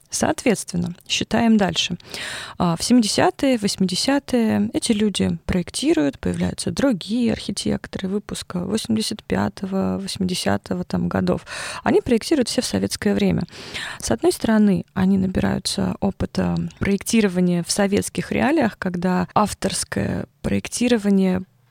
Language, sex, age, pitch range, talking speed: Russian, female, 20-39, 175-215 Hz, 95 wpm